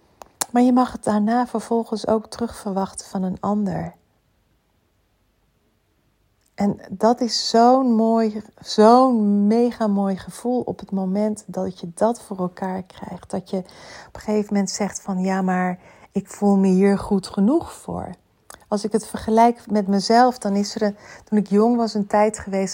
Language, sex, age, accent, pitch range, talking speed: Dutch, female, 40-59, Dutch, 185-215 Hz, 165 wpm